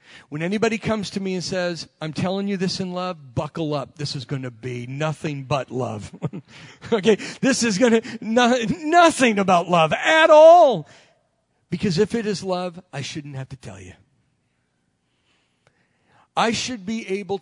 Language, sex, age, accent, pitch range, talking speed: English, male, 40-59, American, 135-190 Hz, 170 wpm